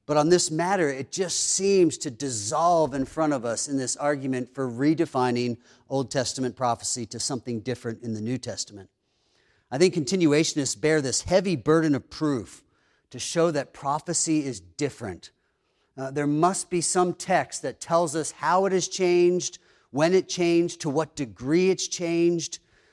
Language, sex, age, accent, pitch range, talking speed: English, male, 40-59, American, 140-185 Hz, 165 wpm